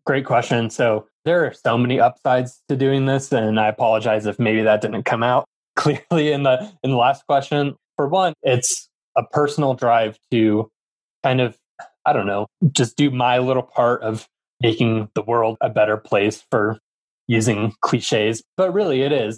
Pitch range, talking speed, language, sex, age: 110-135 Hz, 180 wpm, English, male, 20-39